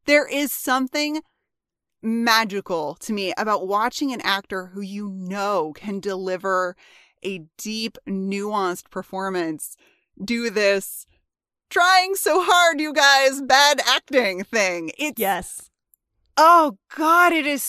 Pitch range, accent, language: 205-300 Hz, American, English